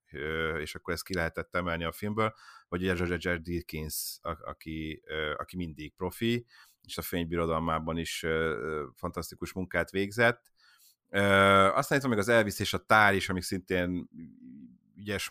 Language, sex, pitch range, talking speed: Hungarian, male, 85-105 Hz, 145 wpm